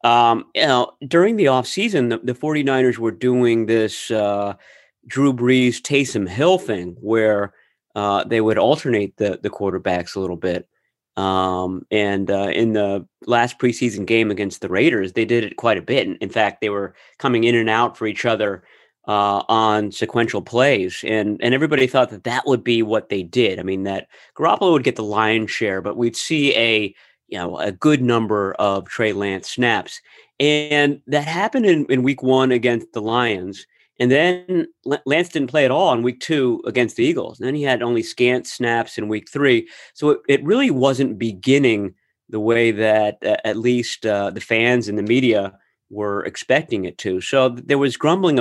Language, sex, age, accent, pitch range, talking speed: English, male, 30-49, American, 100-130 Hz, 190 wpm